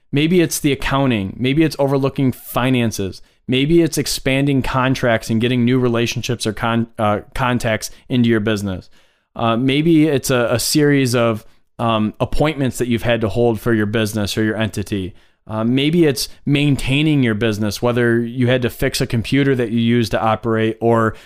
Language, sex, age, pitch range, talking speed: English, male, 30-49, 115-145 Hz, 170 wpm